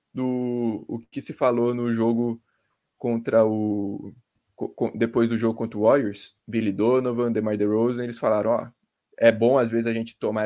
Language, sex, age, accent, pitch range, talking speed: Portuguese, male, 20-39, Brazilian, 110-125 Hz, 180 wpm